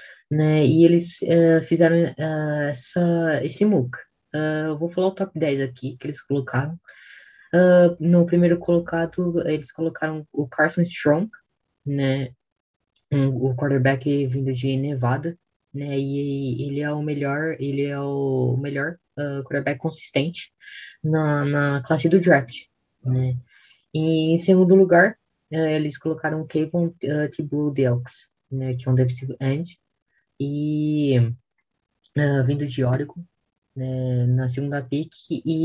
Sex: female